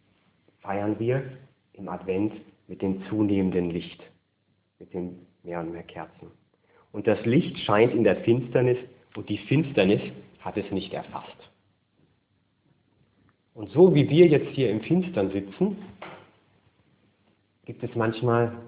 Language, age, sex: English, 40-59, male